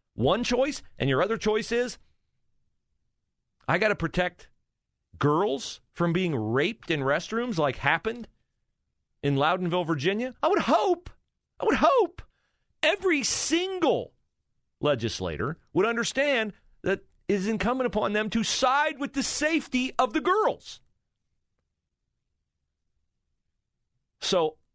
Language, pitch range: English, 175-280 Hz